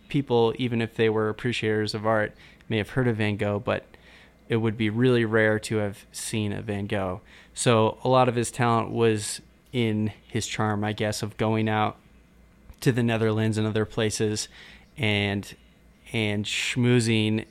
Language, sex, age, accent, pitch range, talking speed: English, male, 20-39, American, 105-120 Hz, 170 wpm